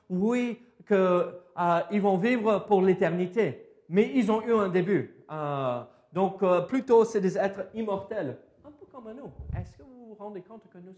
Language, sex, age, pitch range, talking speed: French, male, 40-59, 135-205 Hz, 180 wpm